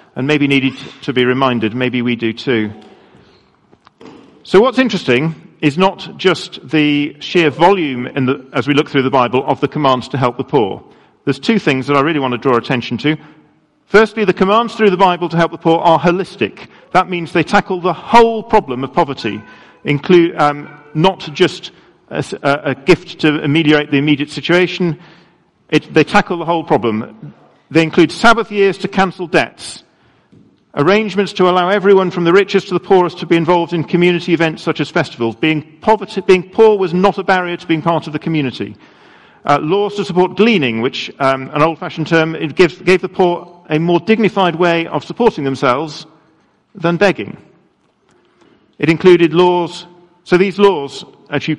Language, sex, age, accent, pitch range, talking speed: English, male, 50-69, British, 140-180 Hz, 175 wpm